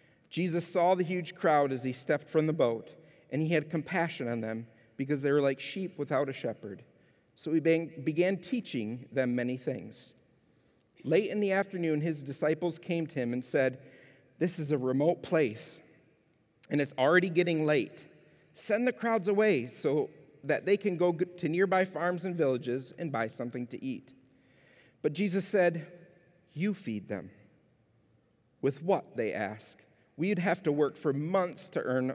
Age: 40-59